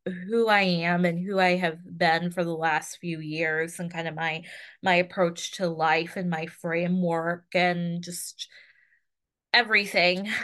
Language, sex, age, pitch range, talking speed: English, female, 20-39, 170-210 Hz, 155 wpm